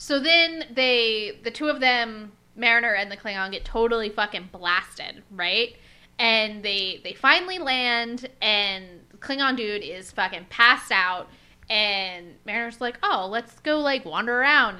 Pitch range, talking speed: 200-270 Hz, 155 wpm